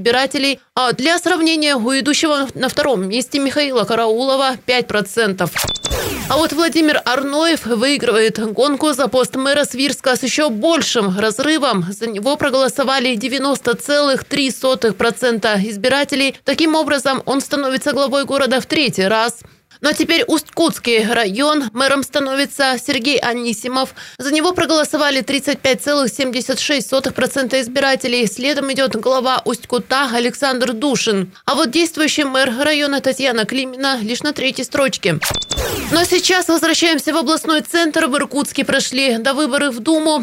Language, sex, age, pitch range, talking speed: Russian, female, 20-39, 245-290 Hz, 125 wpm